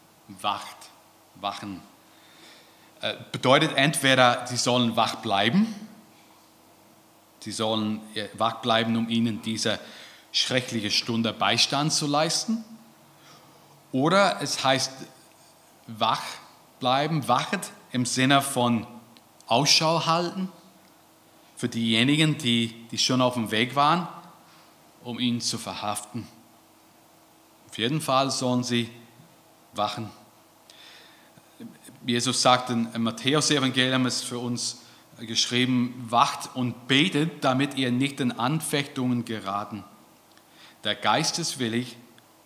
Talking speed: 100 wpm